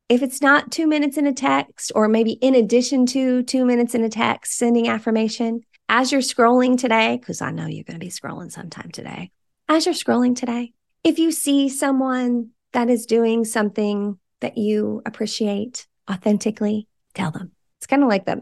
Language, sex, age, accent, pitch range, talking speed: English, female, 30-49, American, 190-255 Hz, 185 wpm